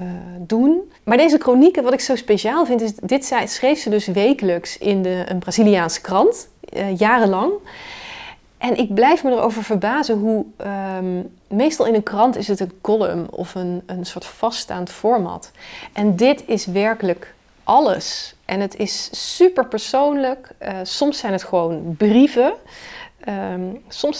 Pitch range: 185-240 Hz